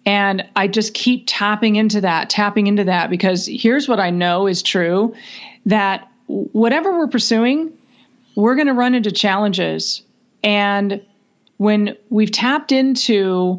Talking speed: 140 wpm